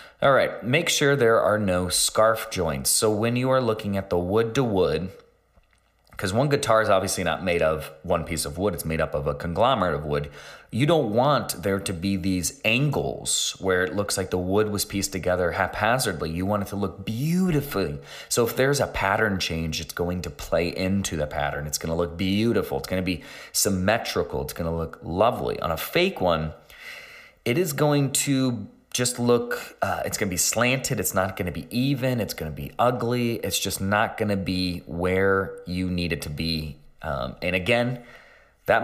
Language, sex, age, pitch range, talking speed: English, male, 30-49, 85-115 Hz, 205 wpm